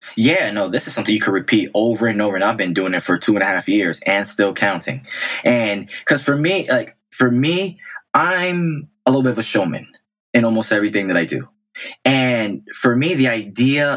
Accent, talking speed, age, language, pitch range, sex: American, 215 wpm, 20-39, English, 105-130 Hz, male